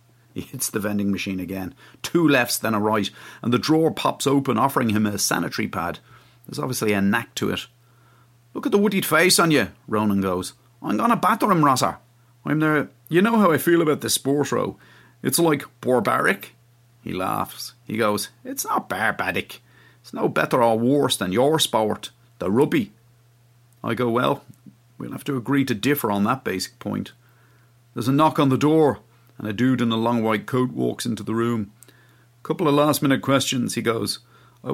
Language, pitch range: English, 110-135 Hz